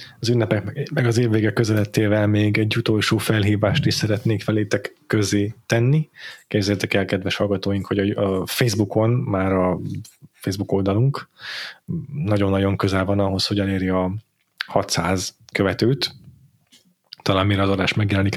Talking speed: 130 wpm